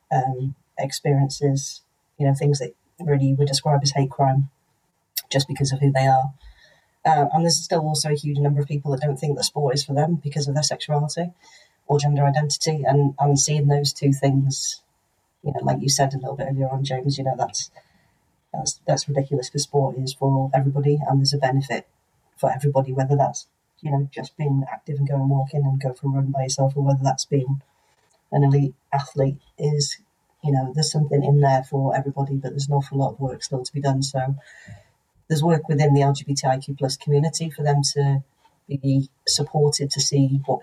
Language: English